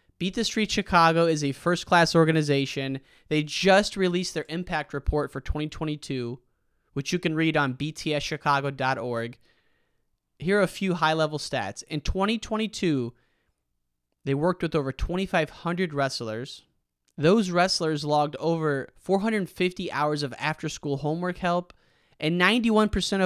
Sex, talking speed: male, 125 wpm